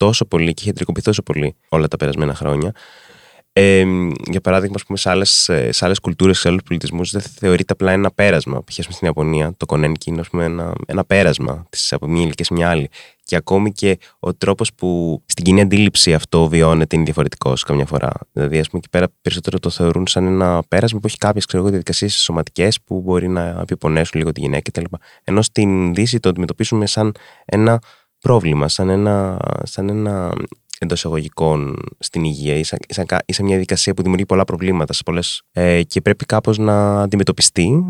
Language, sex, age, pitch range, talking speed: Greek, male, 20-39, 80-105 Hz, 170 wpm